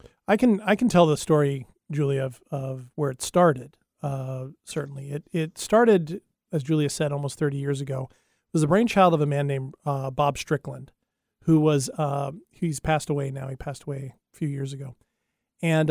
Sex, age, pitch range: male, 40-59, 140-170 Hz